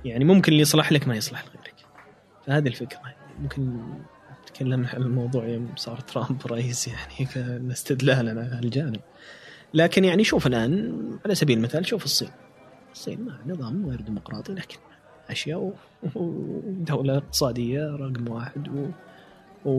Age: 20-39